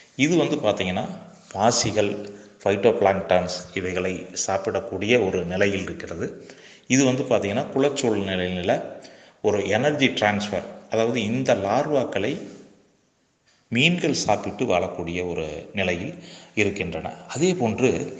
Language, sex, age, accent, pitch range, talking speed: Tamil, male, 30-49, native, 95-120 Hz, 85 wpm